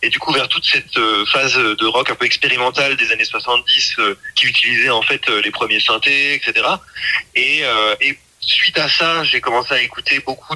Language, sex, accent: French, male, French